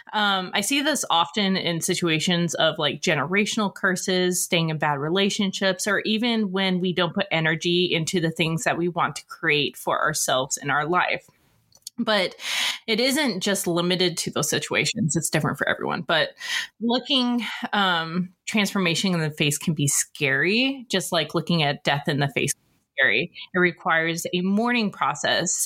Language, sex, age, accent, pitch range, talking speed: English, female, 20-39, American, 165-215 Hz, 170 wpm